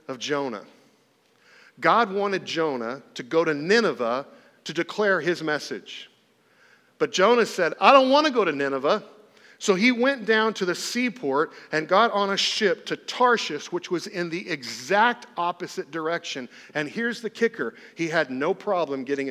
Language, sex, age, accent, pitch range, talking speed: English, male, 40-59, American, 135-195 Hz, 165 wpm